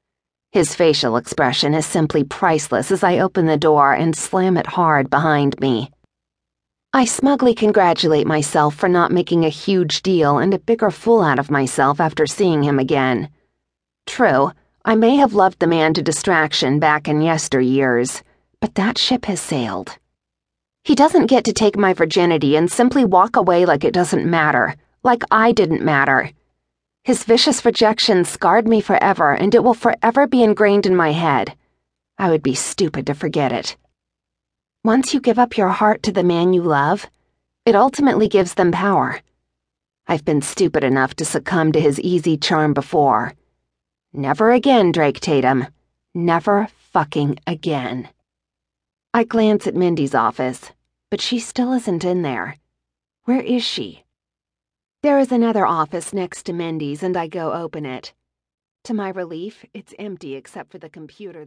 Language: English